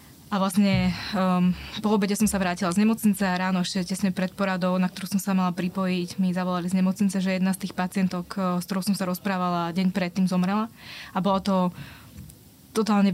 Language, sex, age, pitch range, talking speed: Slovak, female, 20-39, 180-195 Hz, 195 wpm